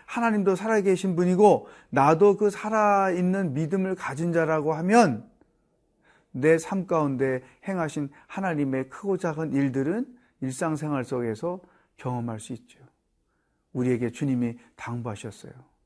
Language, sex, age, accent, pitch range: Korean, male, 40-59, native, 130-180 Hz